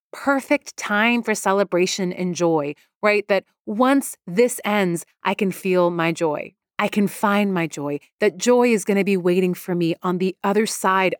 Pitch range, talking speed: 170-215 Hz, 180 wpm